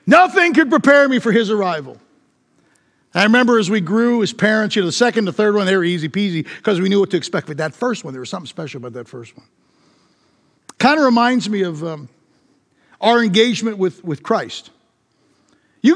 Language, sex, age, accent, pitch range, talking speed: English, male, 50-69, American, 205-290 Hz, 205 wpm